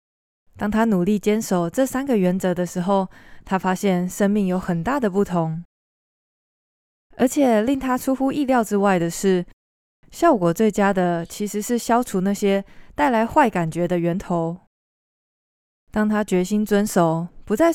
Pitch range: 180-230 Hz